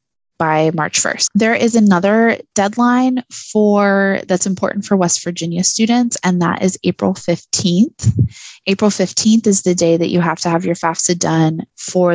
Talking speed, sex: 165 wpm, female